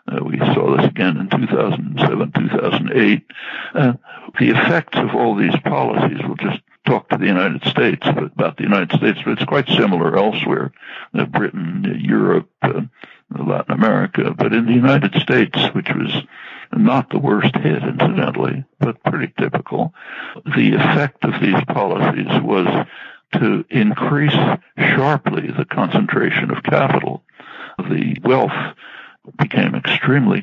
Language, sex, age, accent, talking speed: English, male, 60-79, American, 140 wpm